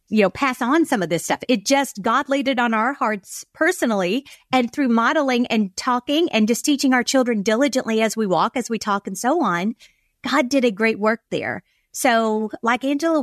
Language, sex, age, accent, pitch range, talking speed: English, female, 40-59, American, 205-265 Hz, 210 wpm